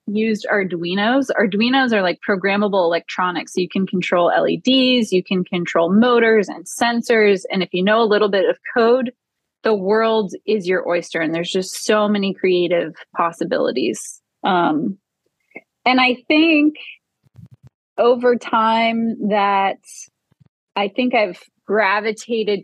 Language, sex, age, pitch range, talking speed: English, female, 20-39, 185-230 Hz, 130 wpm